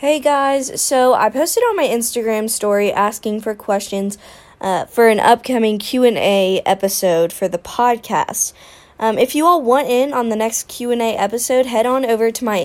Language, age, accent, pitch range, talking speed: English, 20-39, American, 200-250 Hz, 195 wpm